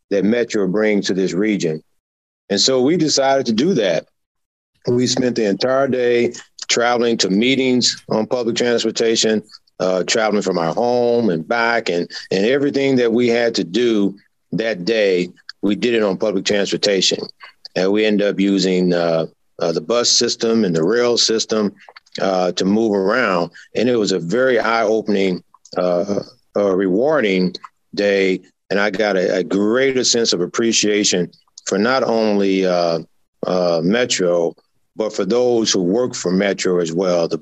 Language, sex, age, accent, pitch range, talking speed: English, male, 50-69, American, 90-115 Hz, 160 wpm